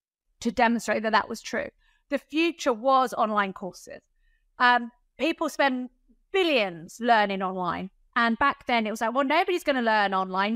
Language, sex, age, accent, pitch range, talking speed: English, female, 30-49, British, 205-250 Hz, 160 wpm